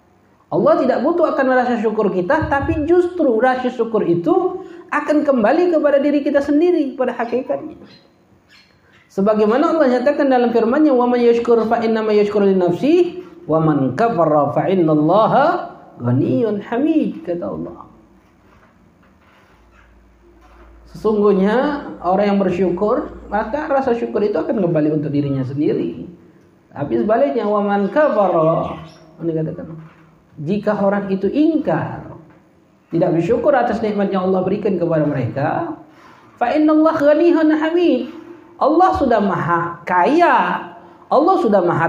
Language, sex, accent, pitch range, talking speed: Indonesian, male, native, 185-295 Hz, 115 wpm